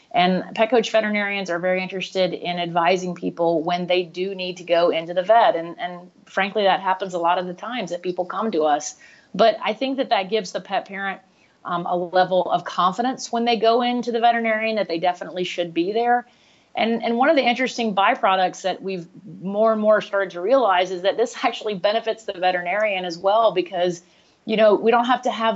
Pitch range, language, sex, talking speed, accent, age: 180-215 Hz, English, female, 215 wpm, American, 30-49